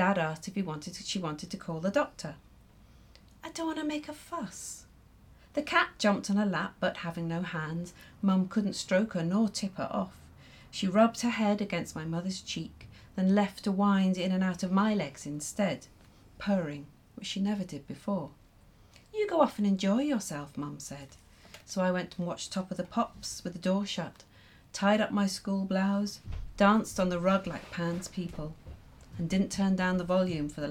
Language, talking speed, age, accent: English, 200 wpm, 40-59, British